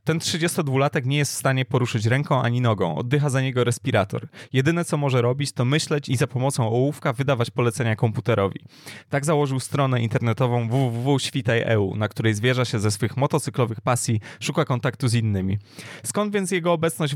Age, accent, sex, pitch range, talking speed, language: 20-39, native, male, 115-145 Hz, 170 wpm, Polish